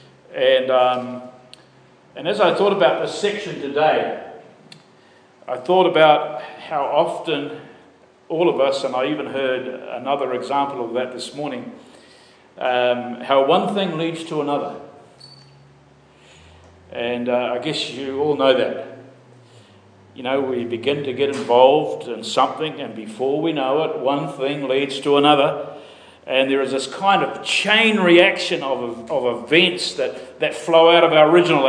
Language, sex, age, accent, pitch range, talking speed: English, male, 50-69, Australian, 130-185 Hz, 155 wpm